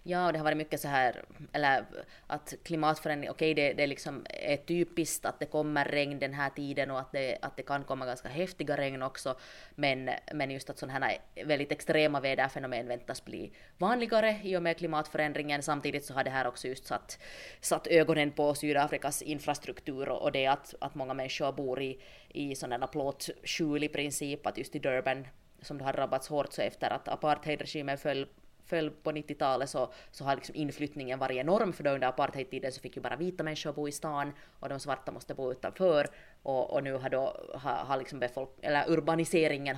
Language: English